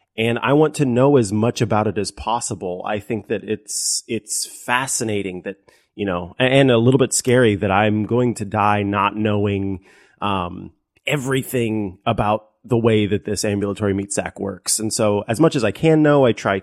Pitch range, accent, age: 100-120 Hz, American, 30-49